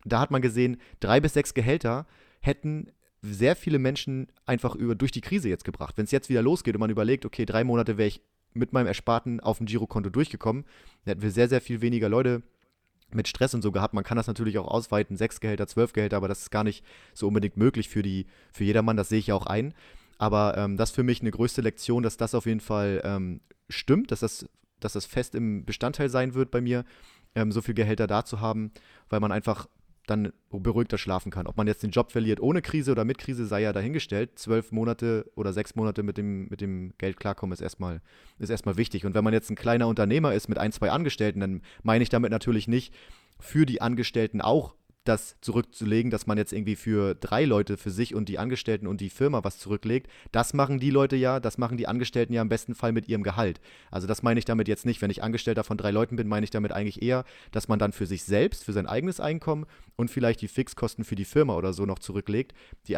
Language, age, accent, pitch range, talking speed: German, 30-49, German, 100-120 Hz, 235 wpm